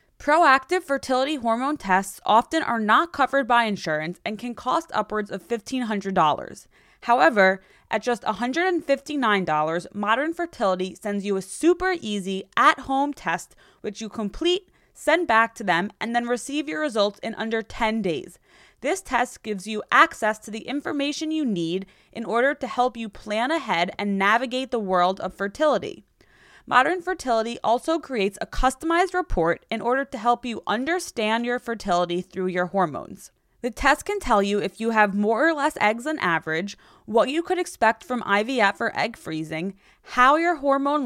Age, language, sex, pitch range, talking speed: 20-39, English, female, 195-270 Hz, 165 wpm